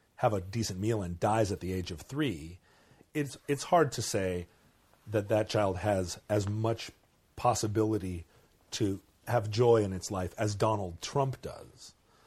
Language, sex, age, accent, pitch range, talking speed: English, male, 40-59, American, 90-115 Hz, 160 wpm